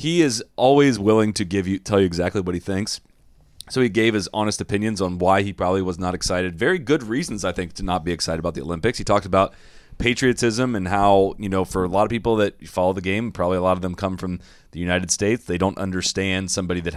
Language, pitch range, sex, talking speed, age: English, 90-110 Hz, male, 250 wpm, 30-49